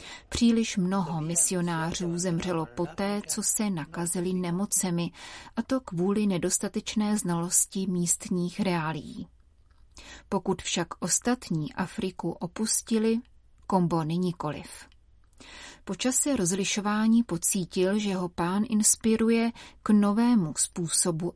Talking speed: 95 wpm